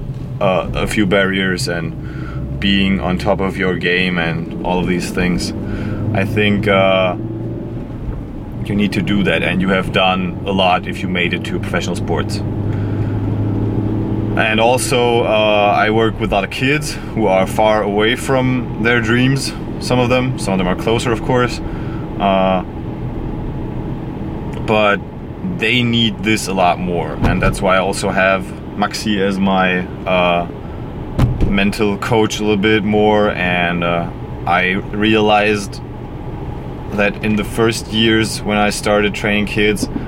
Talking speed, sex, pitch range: 155 wpm, male, 95-110 Hz